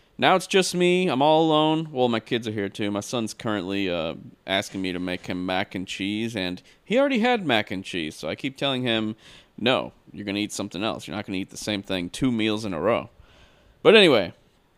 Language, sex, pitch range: English, male, 110-160 Hz